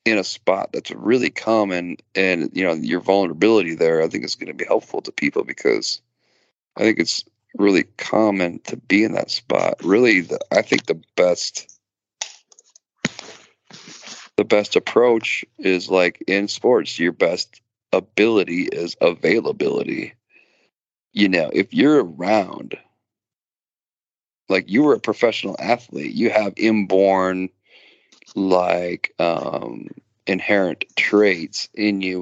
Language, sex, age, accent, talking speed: English, male, 40-59, American, 130 wpm